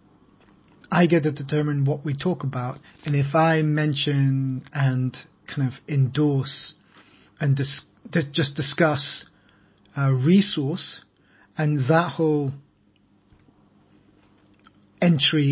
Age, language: 30-49, English